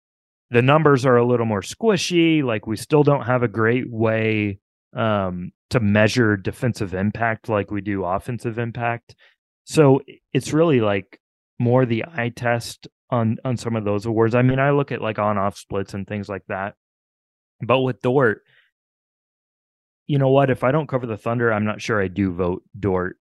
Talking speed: 185 wpm